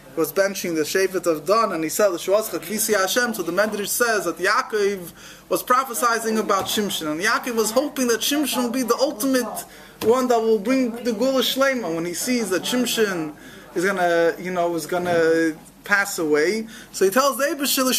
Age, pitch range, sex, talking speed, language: 20-39, 190-235 Hz, male, 185 wpm, English